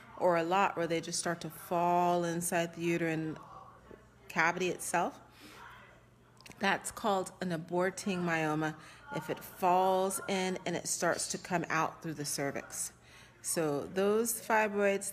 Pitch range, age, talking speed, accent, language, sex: 155-190 Hz, 30-49, 140 wpm, American, English, female